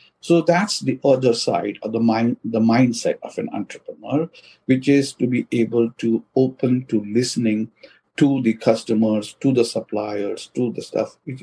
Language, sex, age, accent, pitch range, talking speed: English, male, 50-69, Indian, 120-175 Hz, 170 wpm